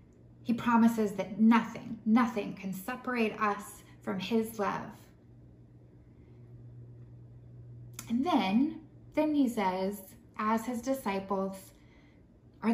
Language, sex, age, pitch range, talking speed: English, female, 20-39, 185-230 Hz, 95 wpm